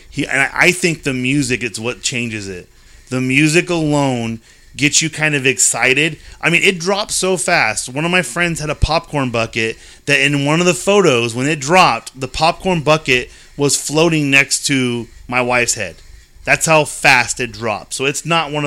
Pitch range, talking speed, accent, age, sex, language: 125-150 Hz, 195 wpm, American, 30-49, male, English